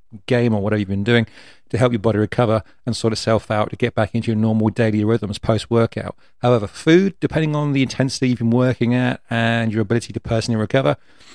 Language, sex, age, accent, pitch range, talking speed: English, male, 40-59, British, 110-130 Hz, 210 wpm